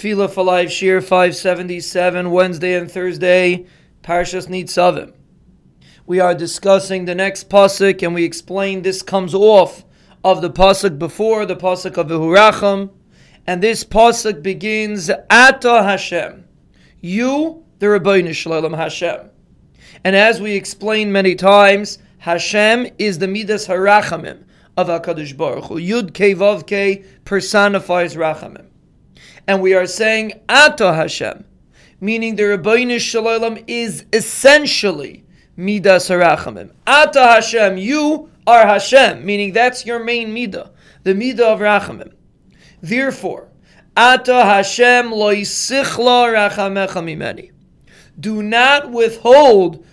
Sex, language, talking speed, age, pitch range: male, English, 120 wpm, 30-49, 180-225 Hz